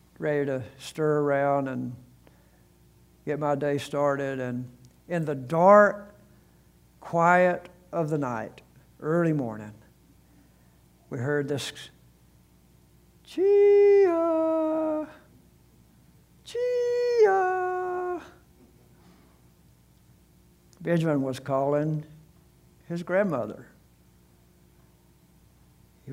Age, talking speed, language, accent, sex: 60-79, 70 wpm, English, American, male